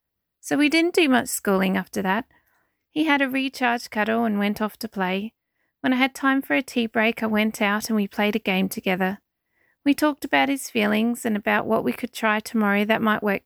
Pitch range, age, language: 205-245 Hz, 30-49, English